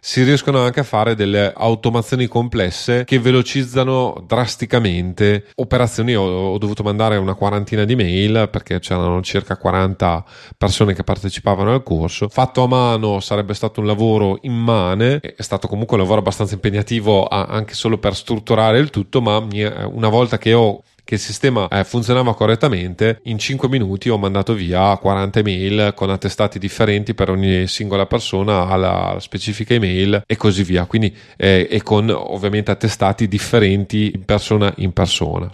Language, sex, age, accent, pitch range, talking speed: Italian, male, 30-49, native, 100-120 Hz, 155 wpm